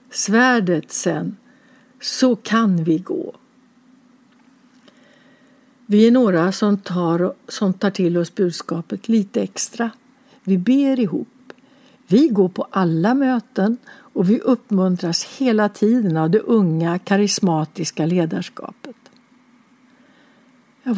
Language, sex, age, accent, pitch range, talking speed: English, female, 60-79, Swedish, 210-260 Hz, 105 wpm